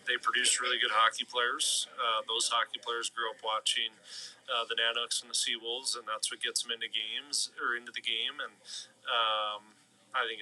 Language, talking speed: English, 195 wpm